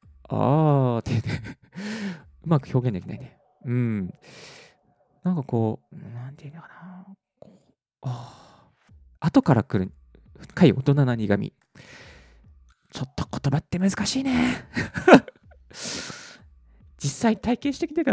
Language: Japanese